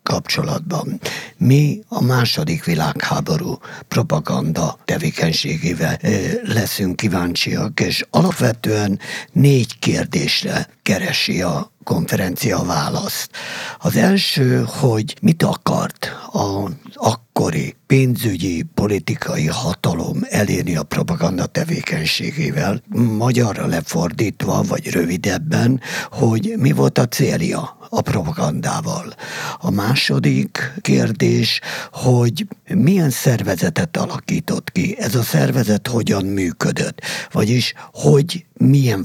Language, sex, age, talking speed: Hungarian, male, 60-79, 90 wpm